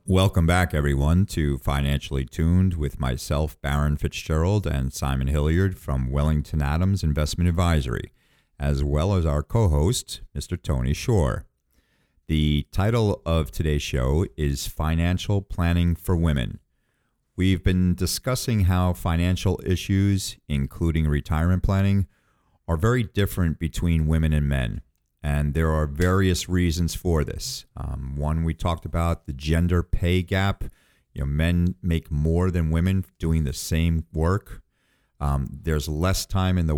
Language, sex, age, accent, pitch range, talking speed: English, male, 40-59, American, 75-95 Hz, 140 wpm